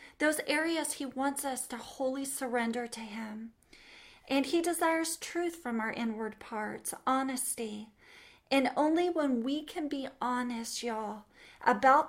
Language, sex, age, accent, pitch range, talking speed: English, female, 40-59, American, 240-280 Hz, 140 wpm